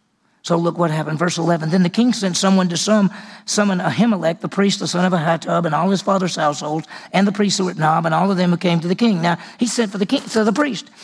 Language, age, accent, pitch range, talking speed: English, 40-59, American, 185-220 Hz, 270 wpm